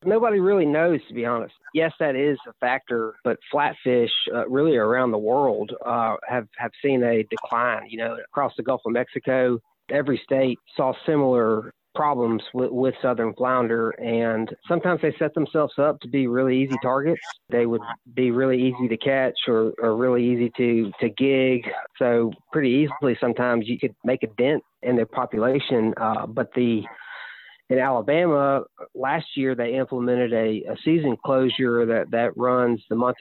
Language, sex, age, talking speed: English, male, 30-49, 170 wpm